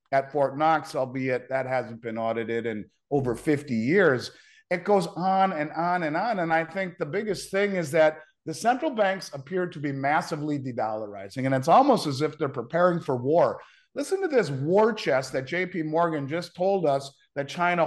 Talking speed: 190 wpm